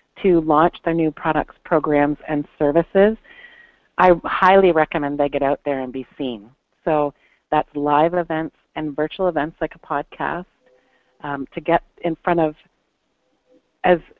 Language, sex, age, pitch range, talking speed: English, female, 40-59, 150-180 Hz, 150 wpm